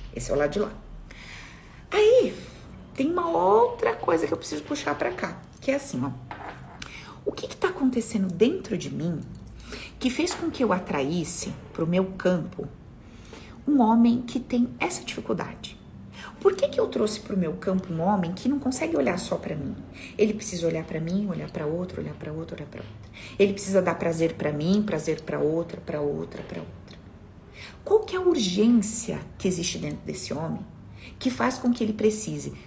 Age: 40-59